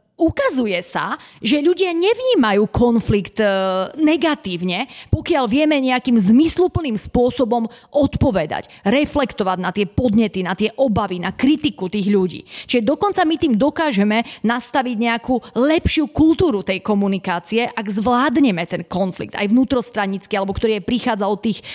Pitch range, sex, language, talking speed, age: 210-270 Hz, female, Slovak, 125 wpm, 30-49